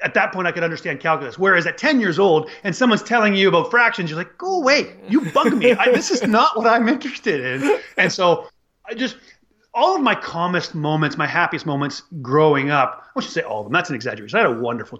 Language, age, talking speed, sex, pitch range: English, 30-49, 235 wpm, male, 145-205 Hz